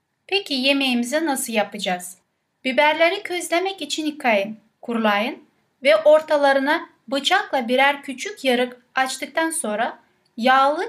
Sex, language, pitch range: female, Turkish, 235-305 Hz